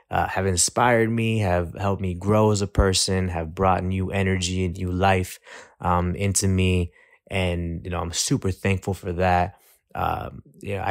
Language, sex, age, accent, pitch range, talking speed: English, male, 20-39, American, 90-100 Hz, 170 wpm